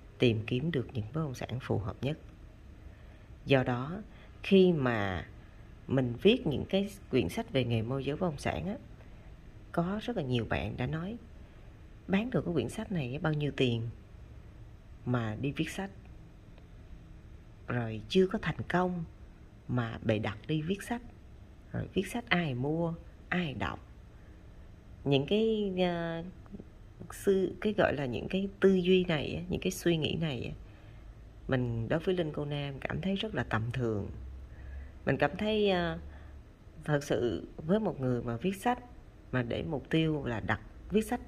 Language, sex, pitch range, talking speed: Vietnamese, female, 110-180 Hz, 165 wpm